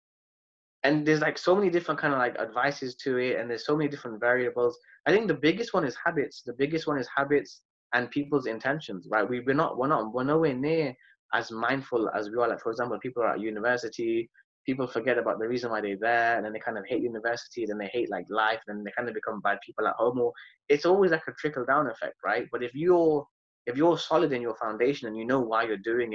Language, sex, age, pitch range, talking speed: English, male, 20-39, 115-150 Hz, 245 wpm